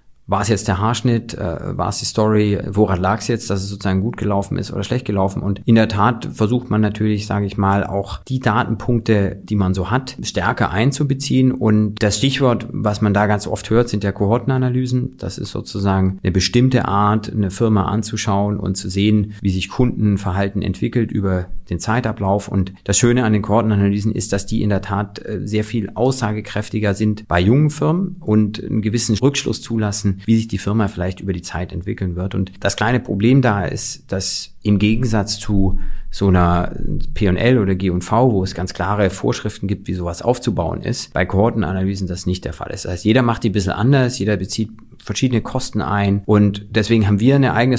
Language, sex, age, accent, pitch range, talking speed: German, male, 40-59, German, 95-115 Hz, 195 wpm